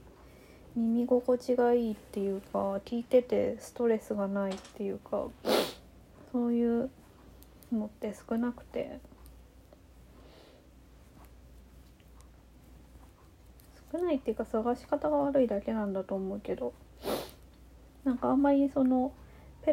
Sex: female